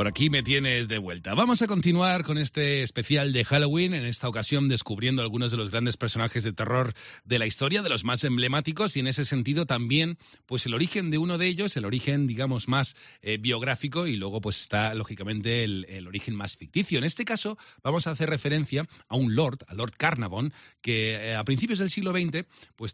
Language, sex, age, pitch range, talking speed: Spanish, male, 40-59, 110-155 Hz, 210 wpm